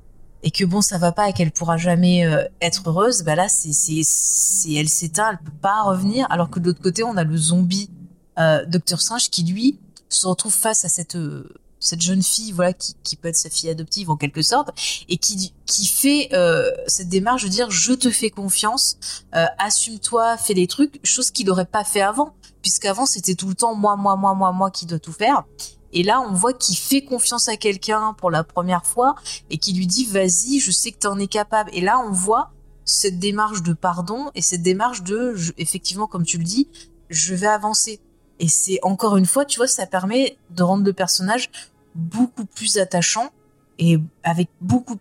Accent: French